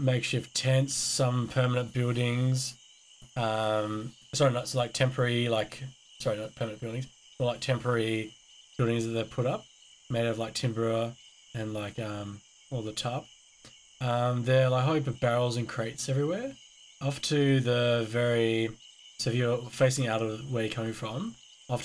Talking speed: 160 wpm